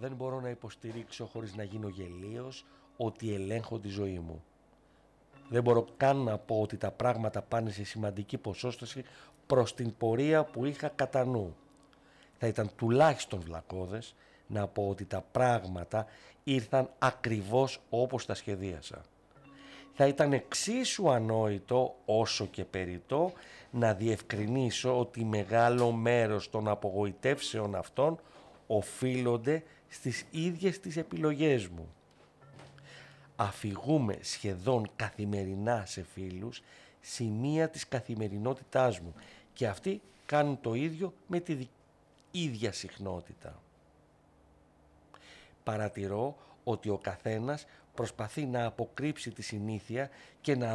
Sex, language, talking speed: male, Greek, 115 wpm